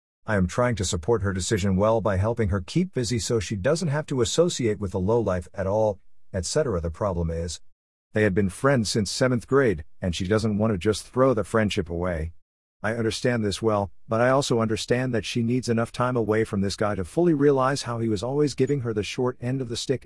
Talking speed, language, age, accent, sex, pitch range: 235 wpm, English, 50-69, American, male, 95-125 Hz